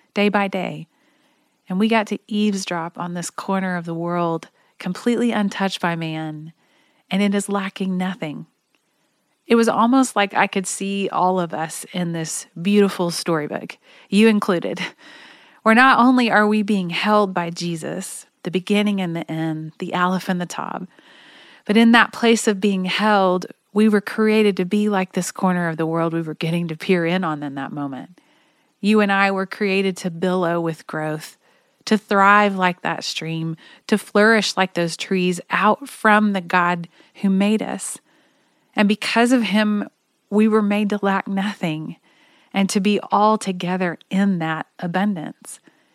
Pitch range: 175-215 Hz